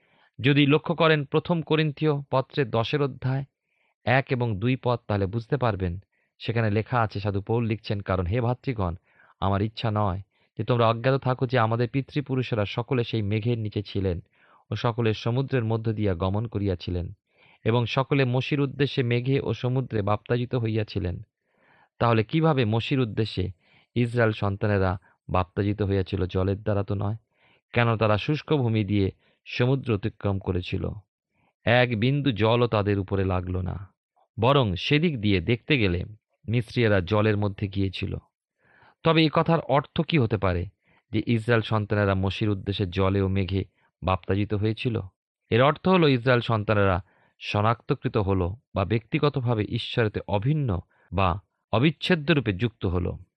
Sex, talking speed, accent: male, 125 wpm, native